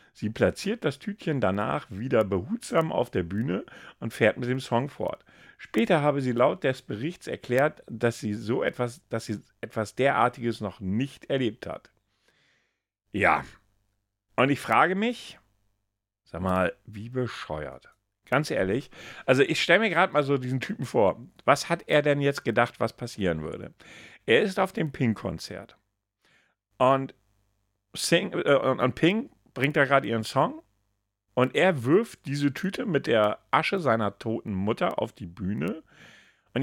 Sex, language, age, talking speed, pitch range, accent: male, German, 50-69, 155 wpm, 110-160 Hz, German